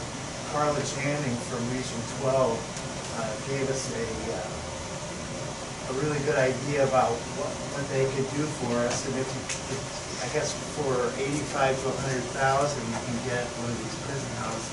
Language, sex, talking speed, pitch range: English, male, 165 wpm, 125-145 Hz